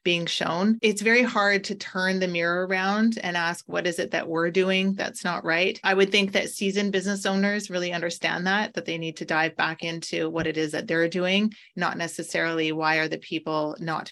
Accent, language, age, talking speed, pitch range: American, English, 30-49, 215 wpm, 165-190 Hz